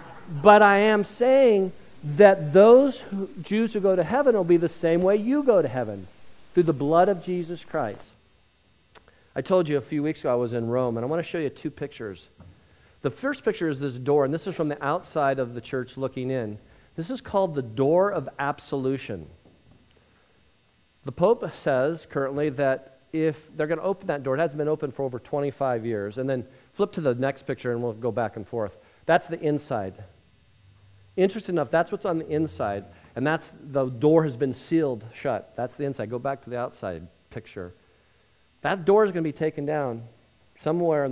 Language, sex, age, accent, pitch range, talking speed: English, male, 40-59, American, 110-165 Hz, 205 wpm